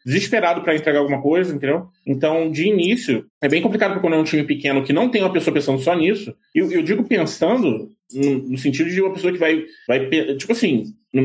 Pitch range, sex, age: 125-175 Hz, male, 20-39